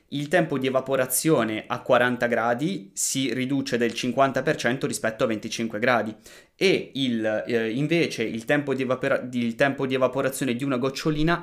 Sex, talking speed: male, 160 wpm